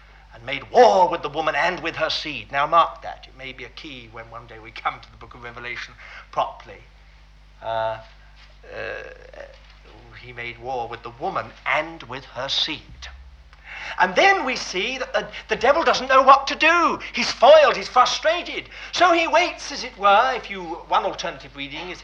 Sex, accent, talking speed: male, British, 190 wpm